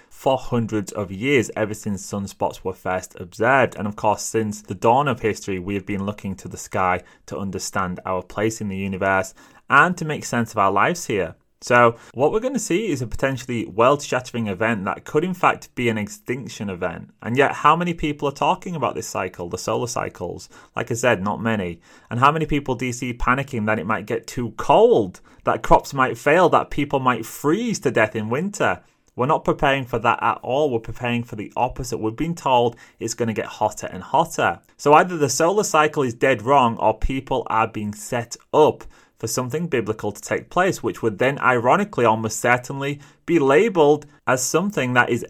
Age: 30-49